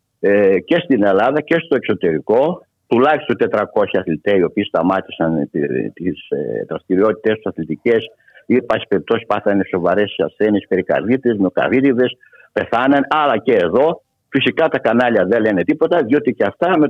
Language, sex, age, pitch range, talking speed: Greek, male, 60-79, 115-155 Hz, 140 wpm